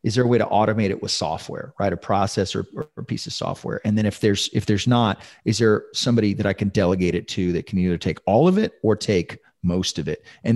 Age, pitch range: 30-49, 95-115 Hz